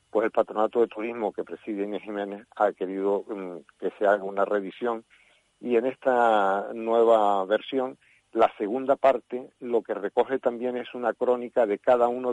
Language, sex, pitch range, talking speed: Spanish, male, 100-120 Hz, 165 wpm